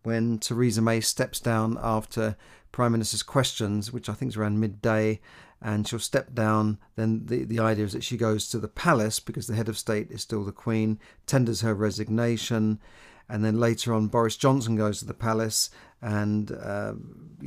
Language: English